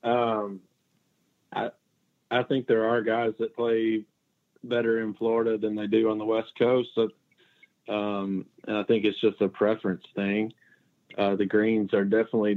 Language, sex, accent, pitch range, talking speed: English, male, American, 105-115 Hz, 160 wpm